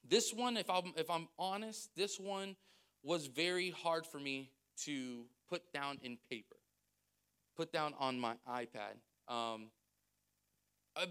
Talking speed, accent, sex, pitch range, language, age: 135 wpm, American, male, 140-220 Hz, English, 30-49